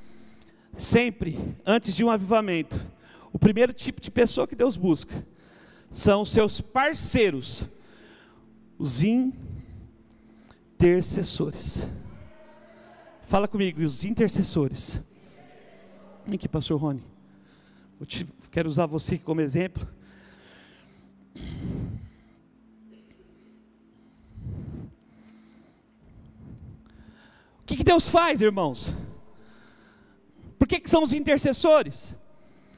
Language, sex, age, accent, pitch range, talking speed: Portuguese, male, 50-69, Brazilian, 195-300 Hz, 80 wpm